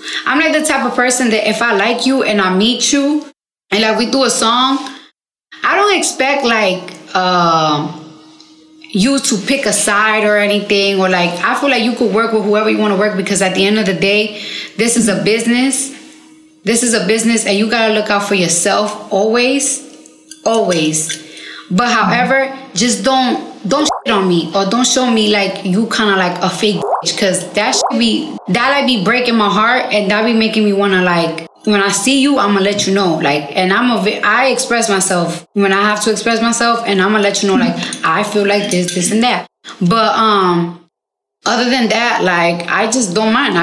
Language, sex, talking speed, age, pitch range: English, female, 215 wpm, 20-39, 195-240 Hz